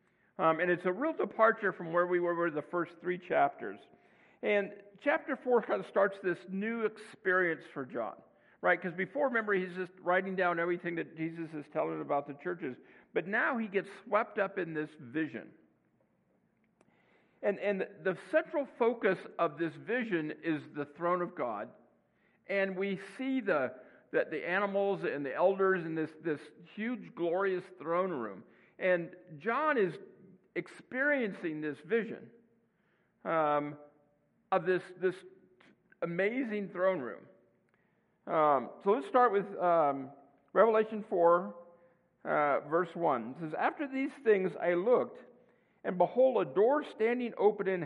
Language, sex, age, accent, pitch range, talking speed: English, male, 50-69, American, 170-220 Hz, 155 wpm